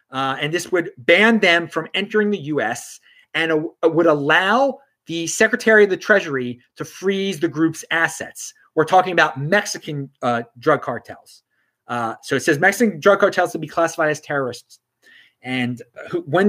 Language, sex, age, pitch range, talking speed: English, male, 30-49, 145-210 Hz, 165 wpm